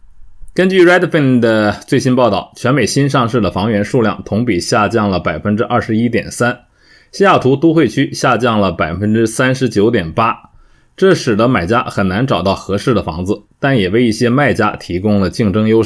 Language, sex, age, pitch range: Chinese, male, 20-39, 100-125 Hz